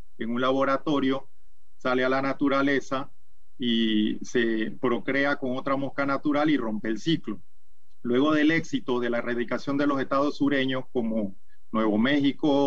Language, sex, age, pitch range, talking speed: Spanish, male, 40-59, 120-140 Hz, 145 wpm